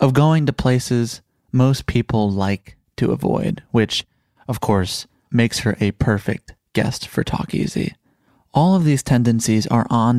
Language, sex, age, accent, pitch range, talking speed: English, male, 30-49, American, 105-125 Hz, 155 wpm